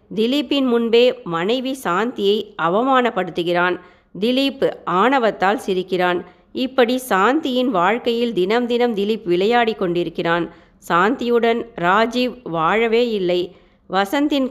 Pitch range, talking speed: 185-250 Hz, 85 wpm